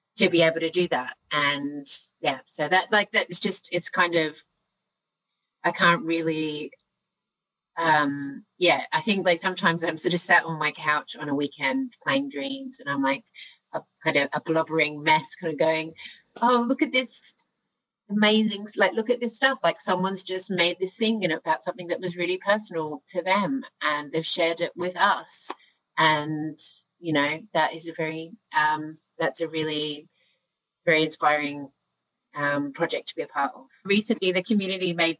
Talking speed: 175 wpm